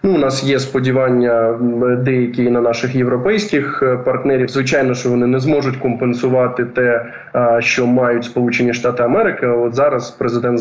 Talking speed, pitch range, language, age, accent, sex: 140 wpm, 120-145 Hz, Ukrainian, 20-39, native, male